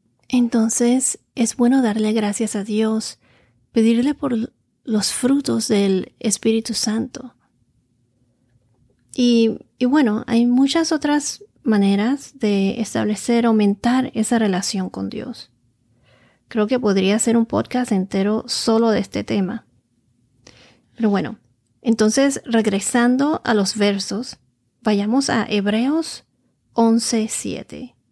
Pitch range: 200-245 Hz